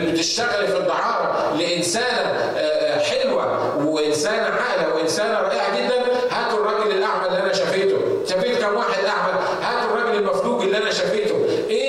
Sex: male